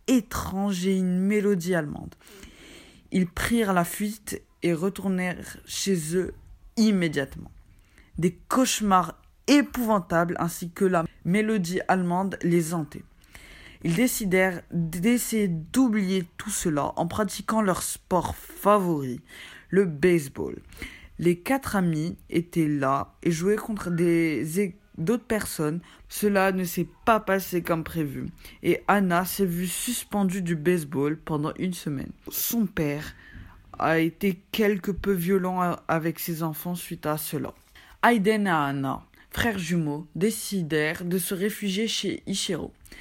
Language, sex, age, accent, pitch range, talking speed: French, female, 20-39, French, 165-200 Hz, 125 wpm